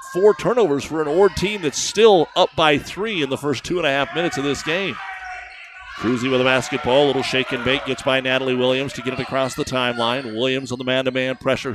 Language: English